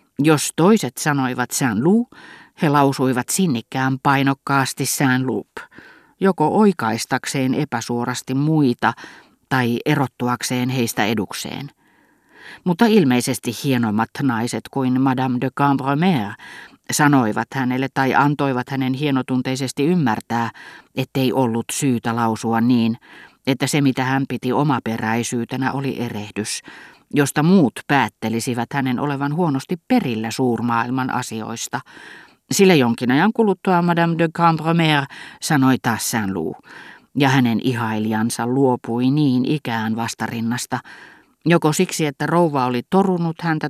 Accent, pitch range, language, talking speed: native, 120-145 Hz, Finnish, 110 wpm